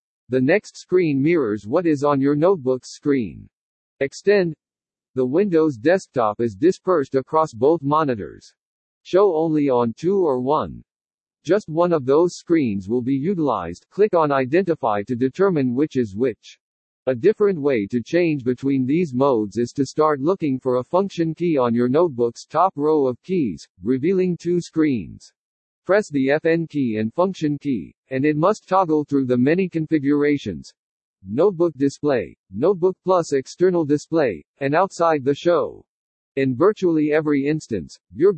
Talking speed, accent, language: 150 wpm, American, English